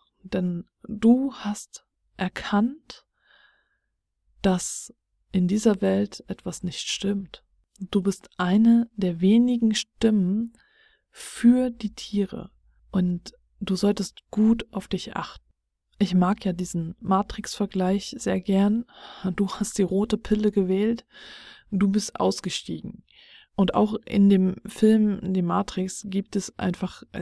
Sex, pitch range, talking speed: female, 190-225 Hz, 120 wpm